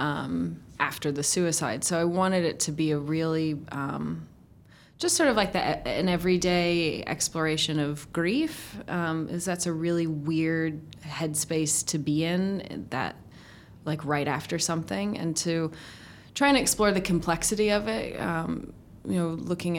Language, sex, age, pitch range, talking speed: English, female, 20-39, 145-180 Hz, 155 wpm